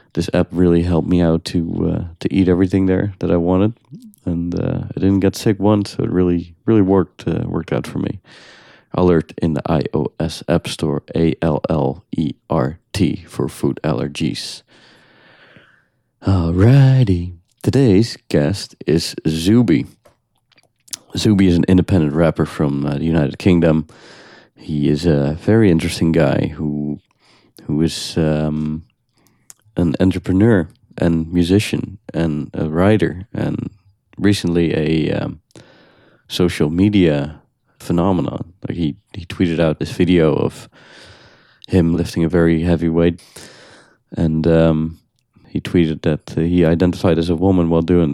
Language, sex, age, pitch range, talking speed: English, male, 40-59, 80-95 Hz, 140 wpm